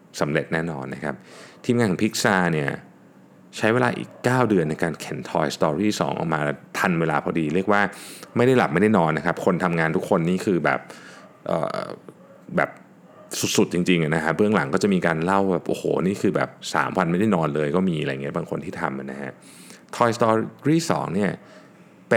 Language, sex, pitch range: Thai, male, 80-100 Hz